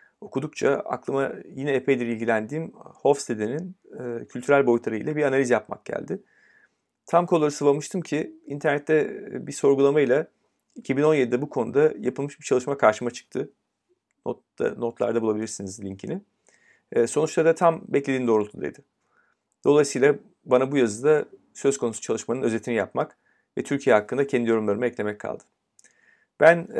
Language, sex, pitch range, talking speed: Turkish, male, 120-145 Hz, 120 wpm